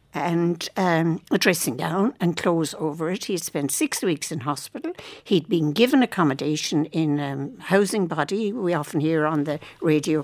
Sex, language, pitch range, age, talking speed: female, English, 155-215 Hz, 60-79, 170 wpm